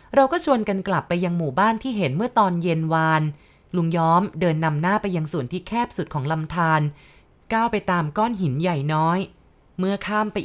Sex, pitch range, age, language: female, 165-220 Hz, 20-39, Thai